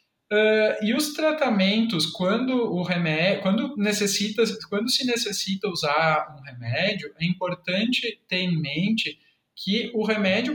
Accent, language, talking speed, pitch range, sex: Brazilian, Portuguese, 130 wpm, 175-225 Hz, male